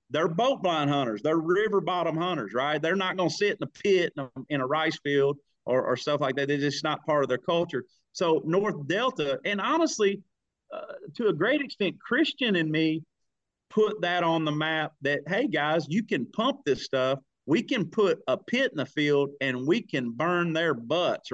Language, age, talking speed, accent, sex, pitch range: English, 40-59, 210 wpm, American, male, 150-220 Hz